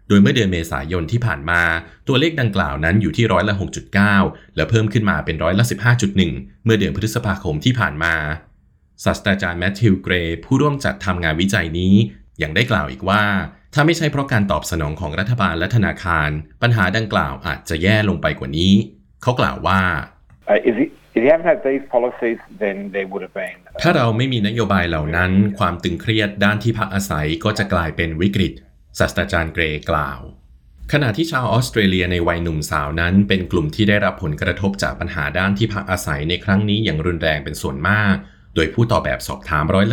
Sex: male